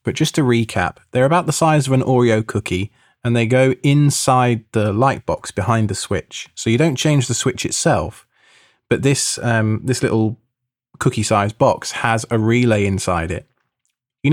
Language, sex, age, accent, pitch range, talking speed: English, male, 20-39, British, 110-130 Hz, 175 wpm